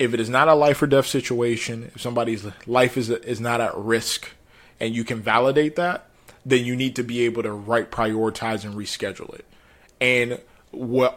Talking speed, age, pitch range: 195 wpm, 20-39, 110-125 Hz